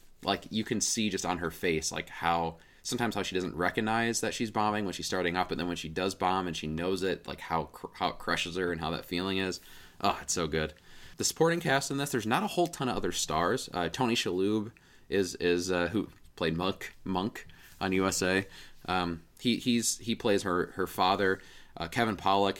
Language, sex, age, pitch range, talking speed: English, male, 20-39, 85-100 Hz, 220 wpm